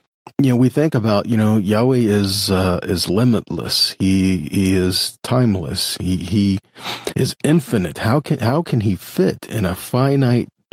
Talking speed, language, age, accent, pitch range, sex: 160 wpm, English, 40-59, American, 100-135 Hz, male